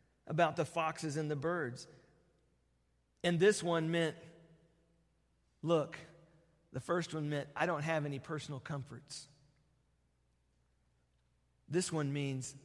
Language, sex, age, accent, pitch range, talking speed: English, male, 40-59, American, 120-170 Hz, 115 wpm